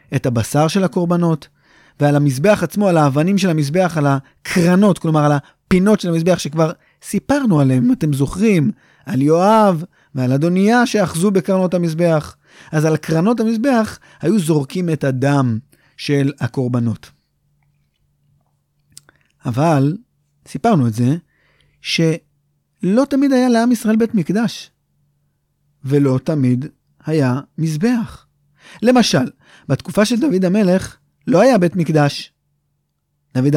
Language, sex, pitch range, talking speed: Hebrew, male, 145-195 Hz, 120 wpm